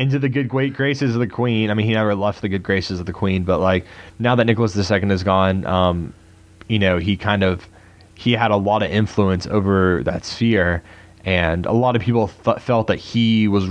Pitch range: 90-110 Hz